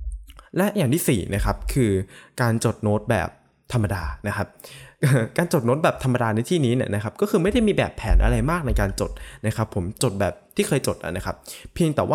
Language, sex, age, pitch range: Thai, male, 20-39, 105-140 Hz